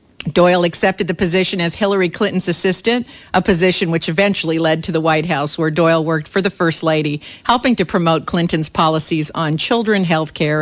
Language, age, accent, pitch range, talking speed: English, 50-69, American, 160-195 Hz, 180 wpm